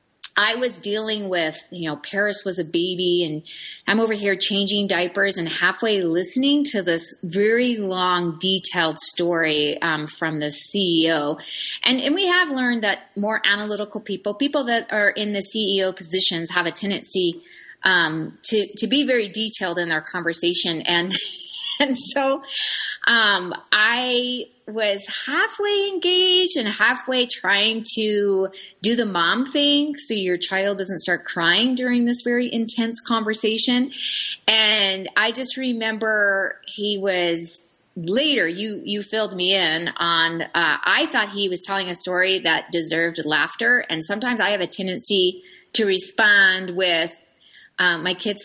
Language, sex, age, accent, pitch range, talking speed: English, female, 30-49, American, 175-235 Hz, 150 wpm